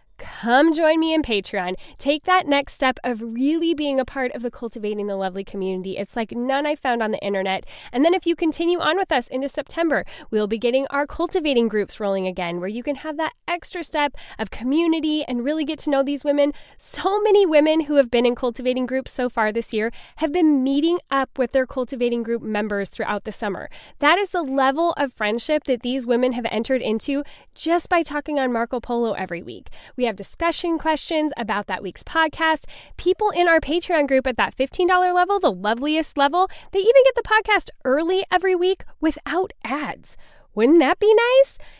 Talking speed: 200 wpm